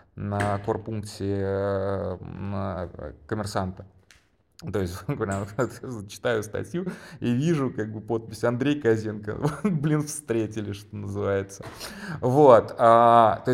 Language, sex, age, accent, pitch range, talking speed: Russian, male, 30-49, native, 100-120 Hz, 95 wpm